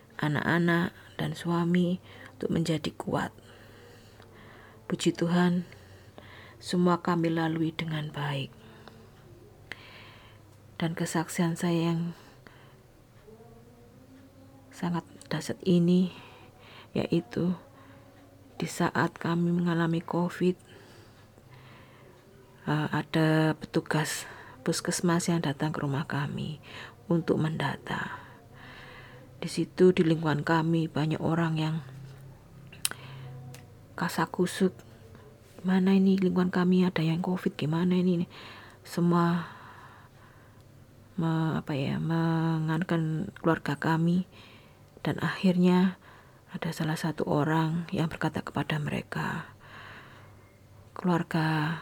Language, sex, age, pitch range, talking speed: Indonesian, female, 40-59, 120-170 Hz, 85 wpm